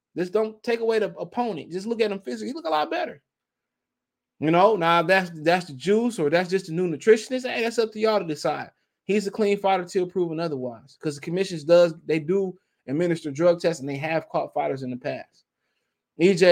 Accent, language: American, English